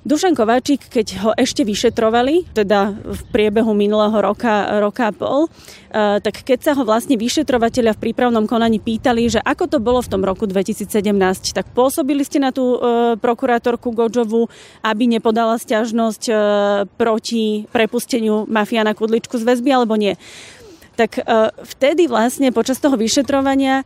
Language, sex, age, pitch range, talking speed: Slovak, female, 30-49, 210-250 Hz, 140 wpm